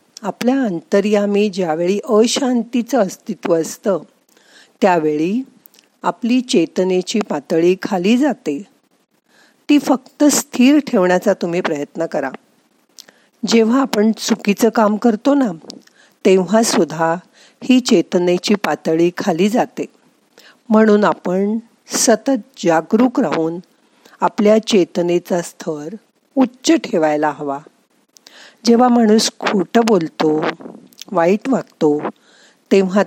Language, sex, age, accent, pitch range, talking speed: Marathi, female, 50-69, native, 175-240 Hz, 80 wpm